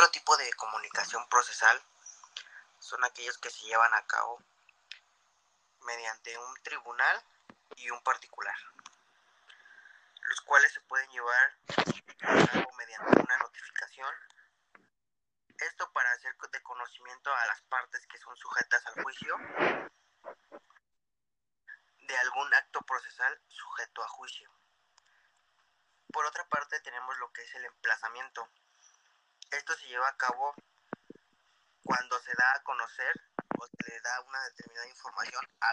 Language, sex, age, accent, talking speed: Spanish, male, 30-49, Mexican, 125 wpm